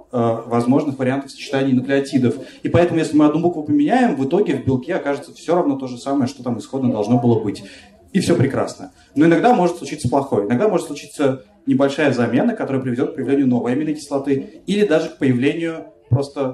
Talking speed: 185 wpm